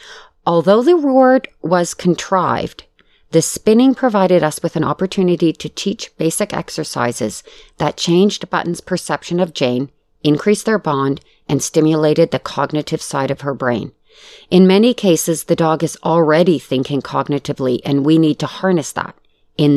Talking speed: 150 wpm